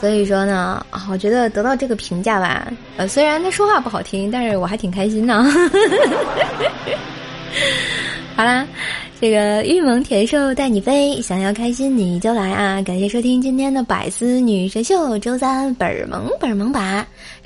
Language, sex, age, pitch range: Chinese, female, 20-39, 195-245 Hz